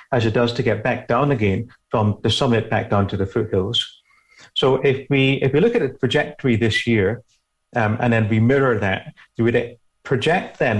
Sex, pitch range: male, 110-140 Hz